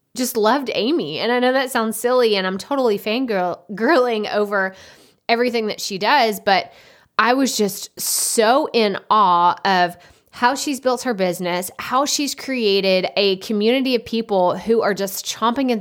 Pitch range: 190-235 Hz